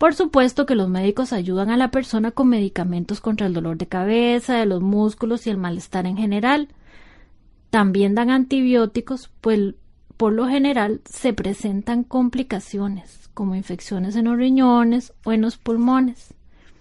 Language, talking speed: Spanish, 155 wpm